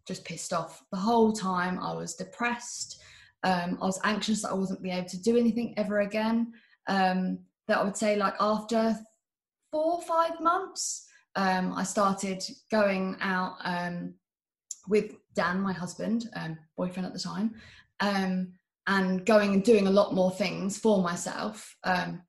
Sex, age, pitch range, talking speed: female, 20-39, 185-220 Hz, 165 wpm